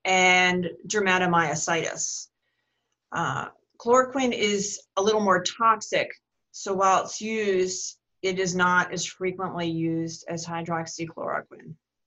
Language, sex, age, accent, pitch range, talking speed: English, female, 30-49, American, 170-205 Hz, 105 wpm